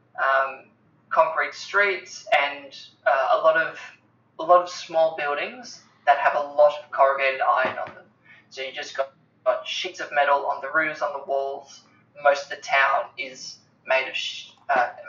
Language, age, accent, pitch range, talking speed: English, 20-39, Australian, 140-165 Hz, 175 wpm